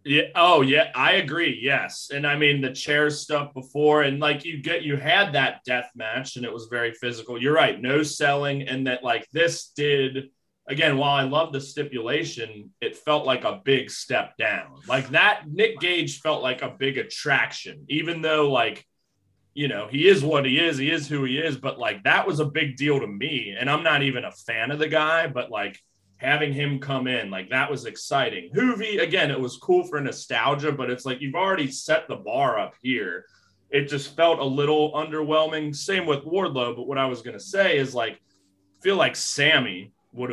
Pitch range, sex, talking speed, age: 125-150 Hz, male, 210 wpm, 20-39